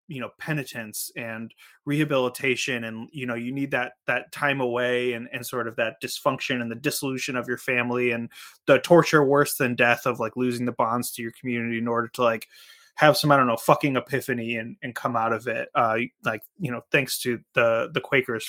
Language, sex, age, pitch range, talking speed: English, male, 20-39, 125-155 Hz, 215 wpm